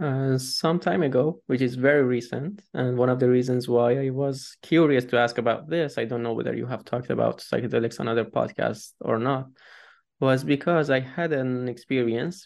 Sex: male